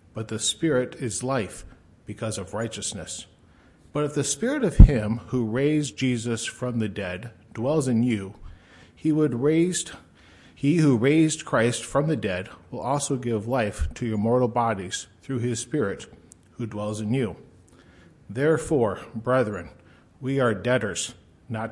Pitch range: 100-130 Hz